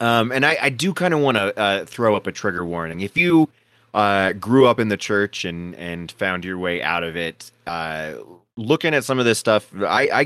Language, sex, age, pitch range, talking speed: English, male, 20-39, 100-140 Hz, 235 wpm